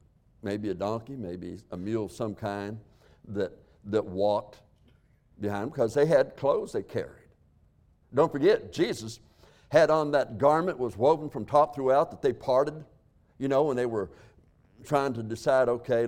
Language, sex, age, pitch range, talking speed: English, male, 60-79, 105-145 Hz, 165 wpm